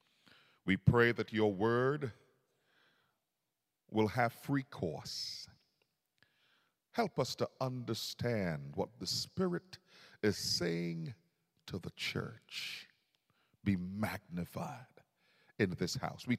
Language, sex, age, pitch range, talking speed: English, male, 40-59, 110-155 Hz, 100 wpm